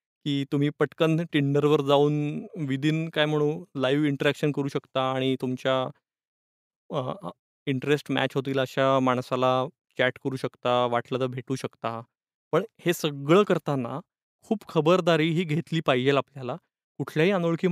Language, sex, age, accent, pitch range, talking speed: Marathi, male, 20-39, native, 135-170 Hz, 120 wpm